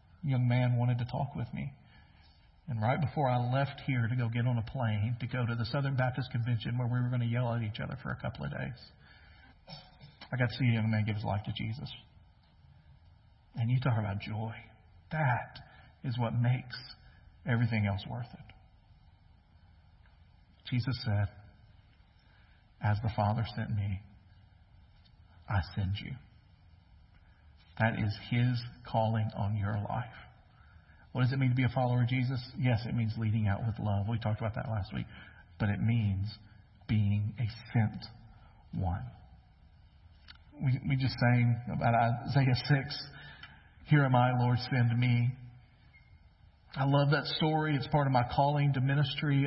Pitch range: 100-130 Hz